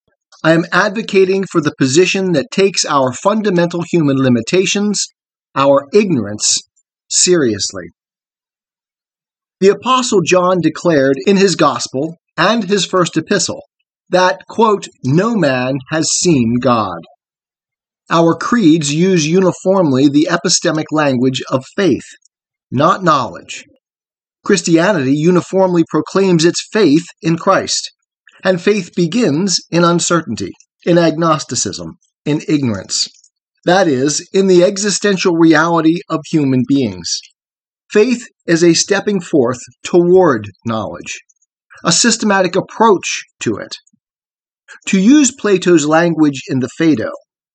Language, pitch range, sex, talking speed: English, 145-195 Hz, male, 110 wpm